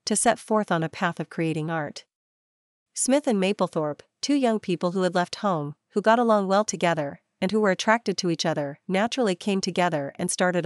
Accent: American